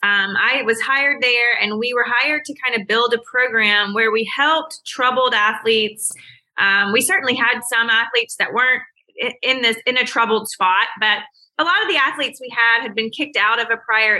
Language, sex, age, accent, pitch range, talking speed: English, female, 20-39, American, 205-255 Hz, 205 wpm